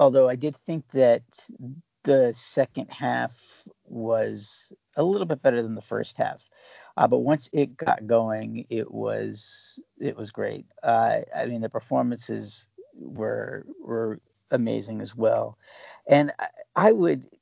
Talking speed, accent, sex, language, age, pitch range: 145 wpm, American, male, English, 50-69, 110-150 Hz